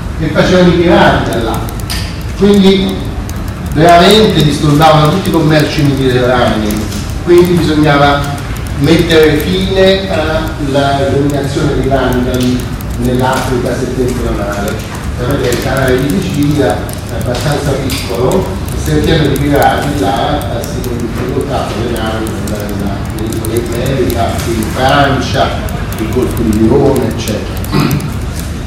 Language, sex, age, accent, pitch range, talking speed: Italian, male, 40-59, native, 110-155 Hz, 100 wpm